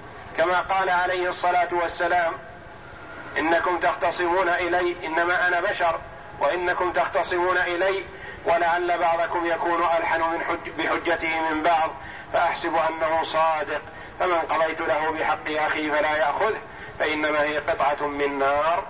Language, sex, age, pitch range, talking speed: Arabic, male, 50-69, 165-190 Hz, 115 wpm